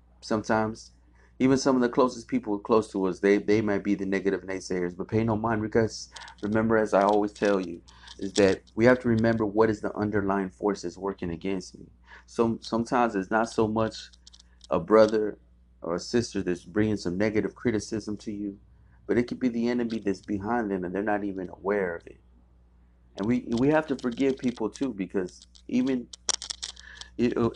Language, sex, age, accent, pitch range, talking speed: English, male, 30-49, American, 95-125 Hz, 190 wpm